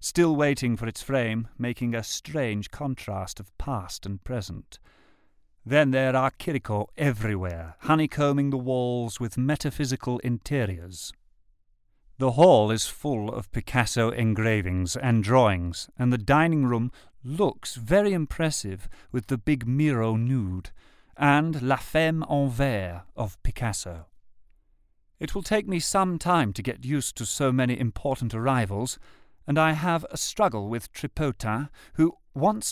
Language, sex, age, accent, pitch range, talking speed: English, male, 40-59, British, 105-150 Hz, 140 wpm